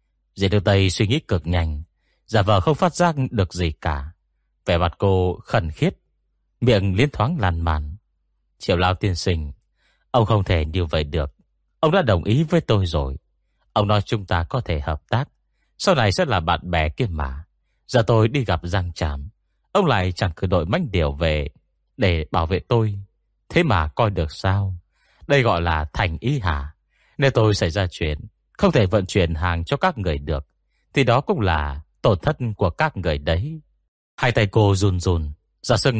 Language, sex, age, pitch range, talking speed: Vietnamese, male, 30-49, 80-110 Hz, 195 wpm